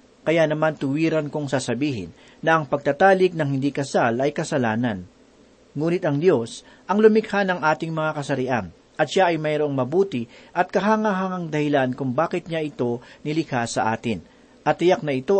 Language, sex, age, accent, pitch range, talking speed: Filipino, male, 40-59, native, 140-195 Hz, 160 wpm